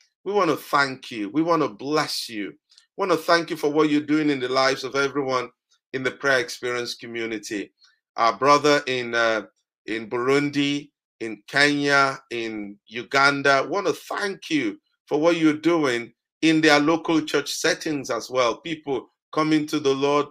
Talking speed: 175 wpm